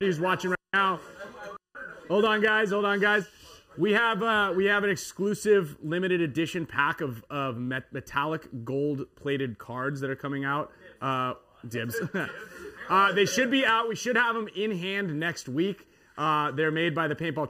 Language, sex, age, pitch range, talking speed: English, male, 30-49, 130-175 Hz, 180 wpm